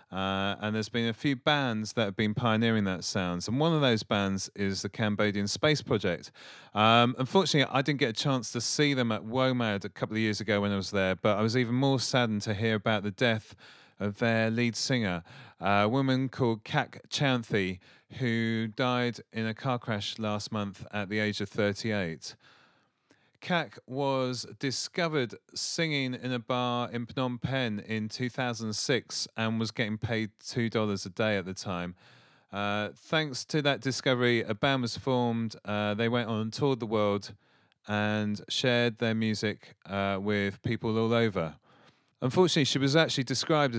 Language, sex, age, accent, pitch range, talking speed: English, male, 30-49, British, 105-125 Hz, 180 wpm